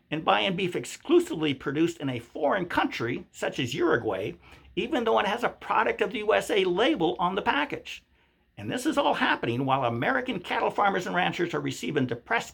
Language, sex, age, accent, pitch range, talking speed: English, male, 60-79, American, 135-200 Hz, 185 wpm